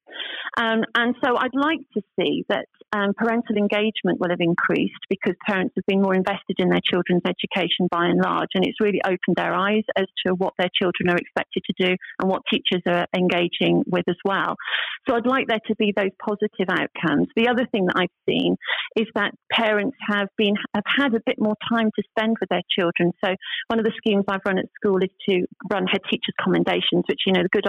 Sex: female